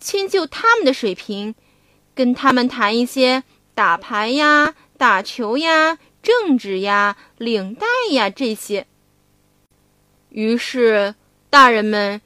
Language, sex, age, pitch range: Chinese, female, 20-39, 210-315 Hz